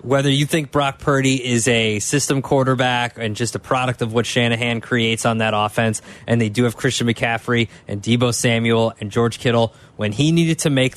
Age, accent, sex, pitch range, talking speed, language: 20-39, American, male, 115-140 Hz, 200 wpm, English